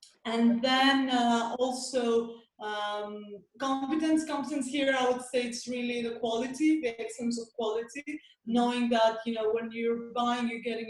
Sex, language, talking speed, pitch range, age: female, English, 155 wpm, 210-250 Hz, 30-49